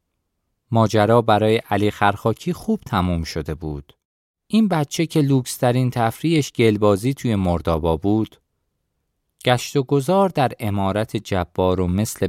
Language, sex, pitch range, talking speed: Persian, male, 85-120 Hz, 115 wpm